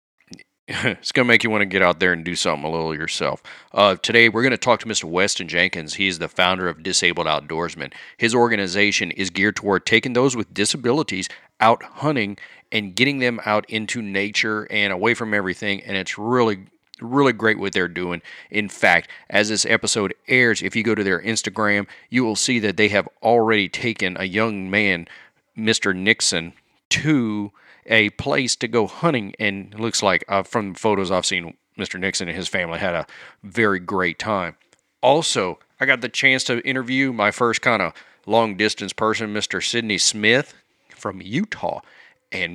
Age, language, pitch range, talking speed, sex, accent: 40-59, English, 95-115 Hz, 185 wpm, male, American